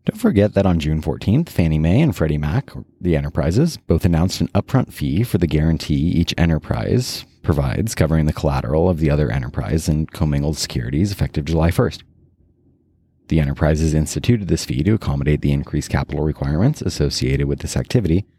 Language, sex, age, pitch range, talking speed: English, male, 30-49, 75-105 Hz, 170 wpm